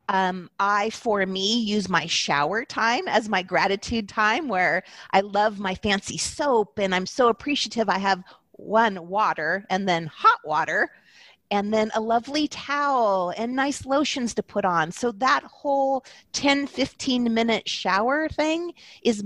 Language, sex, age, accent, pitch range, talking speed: English, female, 40-59, American, 195-280 Hz, 155 wpm